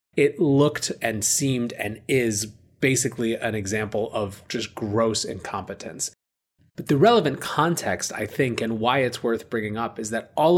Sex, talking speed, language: male, 160 wpm, English